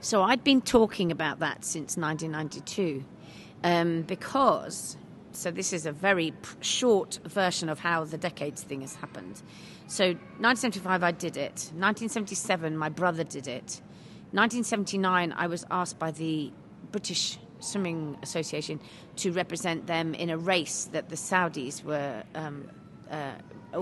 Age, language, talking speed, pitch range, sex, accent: 40-59, English, 140 wpm, 160-195 Hz, female, British